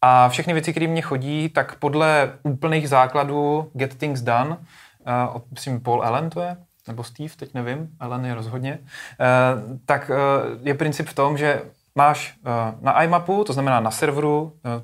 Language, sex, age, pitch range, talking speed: Czech, male, 20-39, 120-150 Hz, 155 wpm